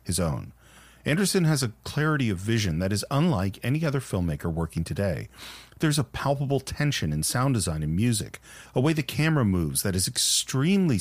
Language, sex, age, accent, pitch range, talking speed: English, male, 40-59, American, 95-145 Hz, 180 wpm